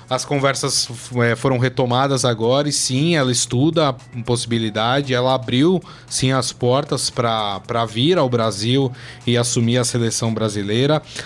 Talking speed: 135 wpm